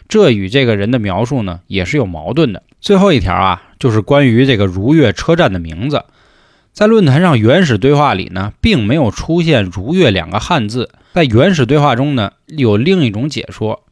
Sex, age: male, 20-39